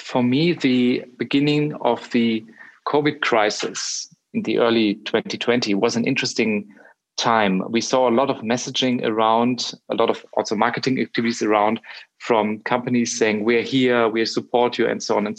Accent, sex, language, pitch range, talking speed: German, male, English, 115-140 Hz, 165 wpm